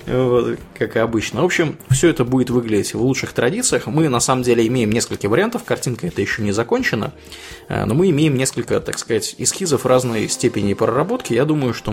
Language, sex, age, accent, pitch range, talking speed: Russian, male, 20-39, native, 105-145 Hz, 190 wpm